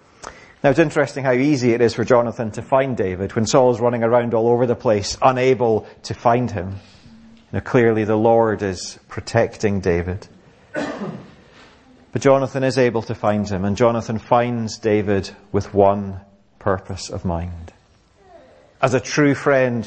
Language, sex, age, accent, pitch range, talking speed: English, male, 40-59, British, 105-130 Hz, 155 wpm